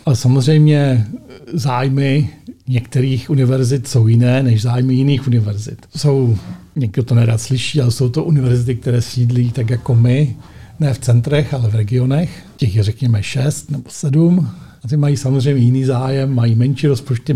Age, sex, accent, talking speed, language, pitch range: 50-69, male, native, 160 wpm, Czech, 120-140 Hz